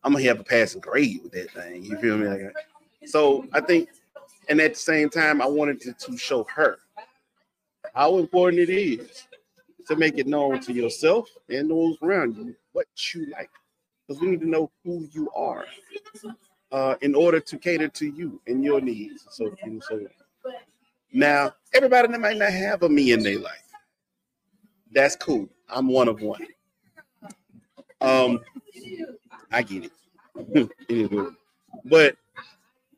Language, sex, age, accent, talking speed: English, male, 40-59, American, 160 wpm